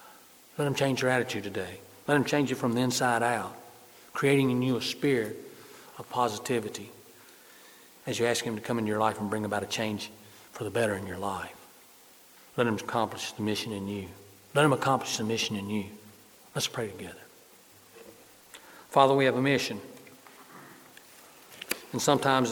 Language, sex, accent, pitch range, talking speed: English, male, American, 105-120 Hz, 175 wpm